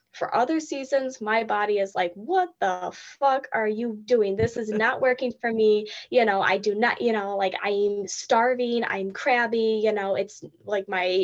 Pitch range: 195-230 Hz